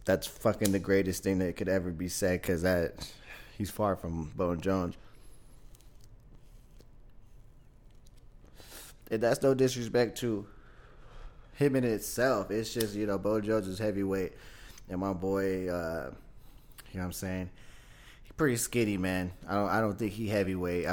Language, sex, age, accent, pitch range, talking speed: English, male, 20-39, American, 95-115 Hz, 150 wpm